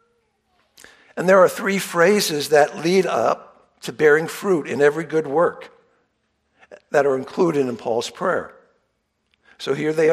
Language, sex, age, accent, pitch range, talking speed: English, male, 60-79, American, 110-170 Hz, 140 wpm